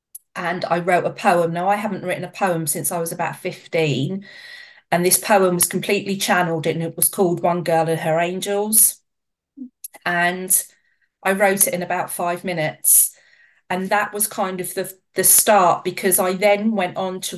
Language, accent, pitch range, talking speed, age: English, British, 170-200 Hz, 185 wpm, 40-59